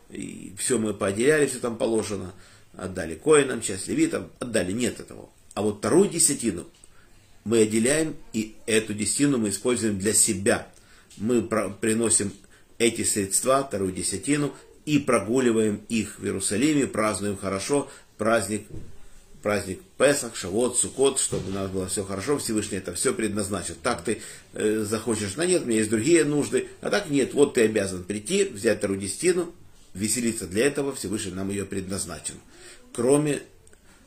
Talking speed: 145 wpm